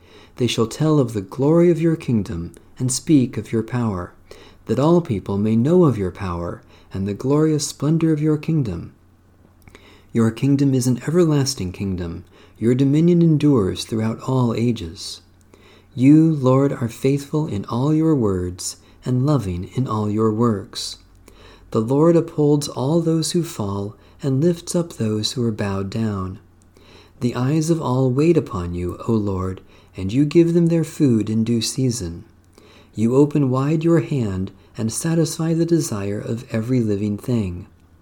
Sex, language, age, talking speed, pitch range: male, English, 40-59, 160 wpm, 95-145 Hz